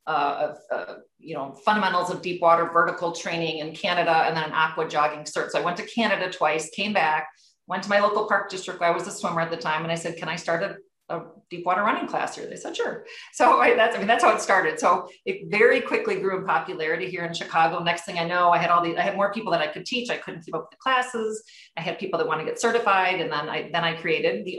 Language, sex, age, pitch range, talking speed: English, female, 40-59, 160-205 Hz, 270 wpm